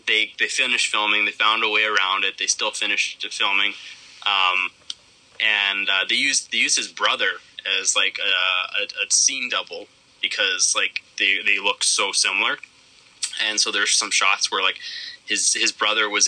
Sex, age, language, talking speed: male, 20-39, English, 180 wpm